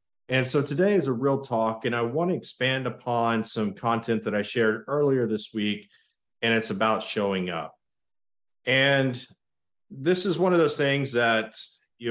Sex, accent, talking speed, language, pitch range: male, American, 175 wpm, English, 105-125 Hz